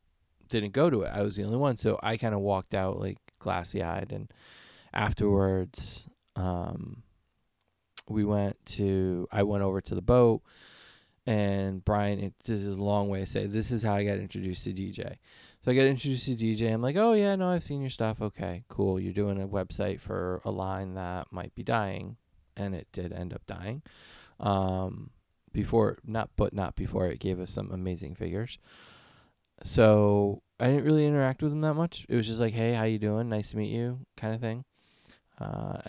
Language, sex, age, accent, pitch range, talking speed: English, male, 20-39, American, 95-115 Hz, 195 wpm